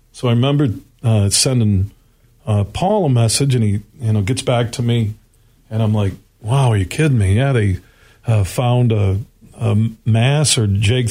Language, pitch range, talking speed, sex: English, 110-135 Hz, 185 wpm, male